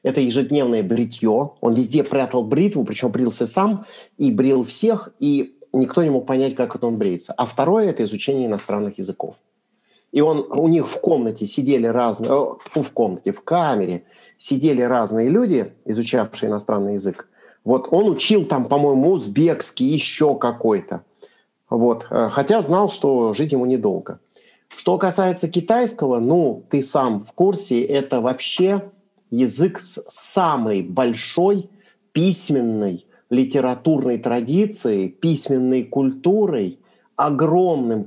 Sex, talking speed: male, 130 wpm